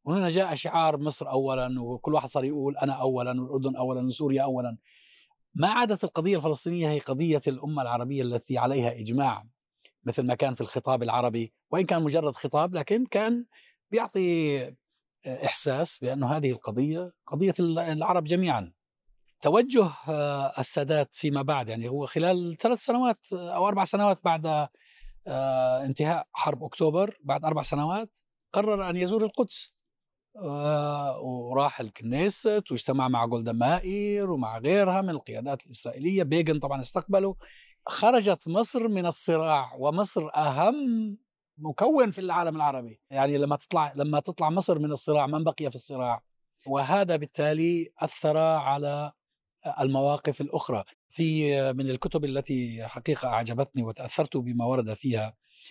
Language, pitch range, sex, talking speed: Arabic, 130-175 Hz, male, 130 wpm